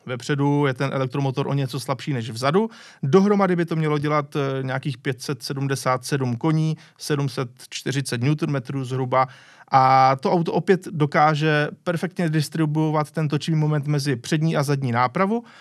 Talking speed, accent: 135 wpm, native